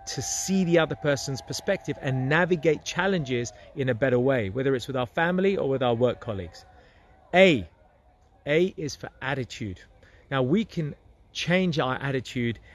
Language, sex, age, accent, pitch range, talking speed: English, male, 30-49, British, 120-155 Hz, 160 wpm